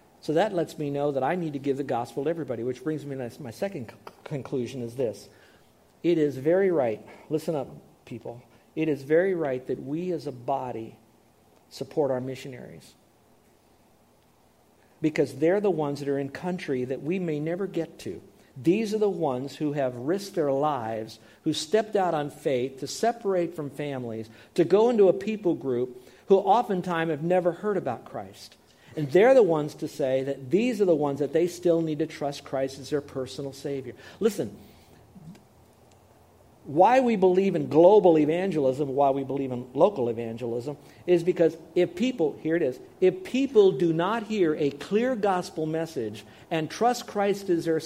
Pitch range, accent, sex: 135-180 Hz, American, male